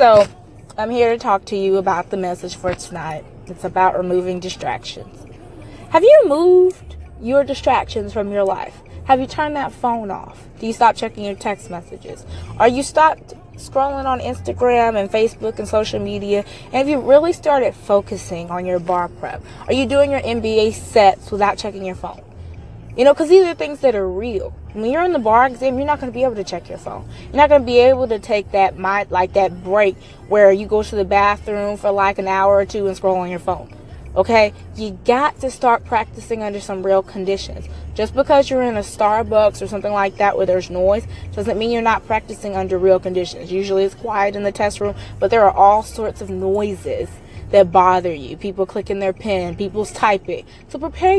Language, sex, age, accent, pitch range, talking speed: English, female, 20-39, American, 190-250 Hz, 210 wpm